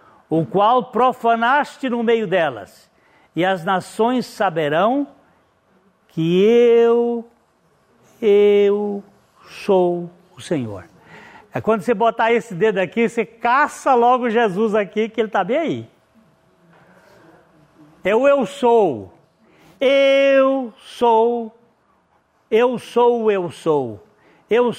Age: 60-79